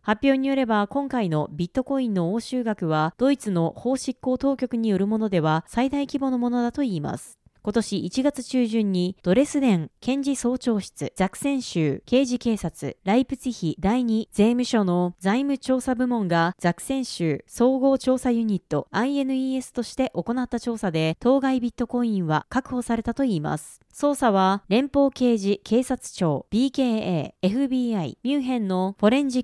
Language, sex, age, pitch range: Japanese, female, 20-39, 190-260 Hz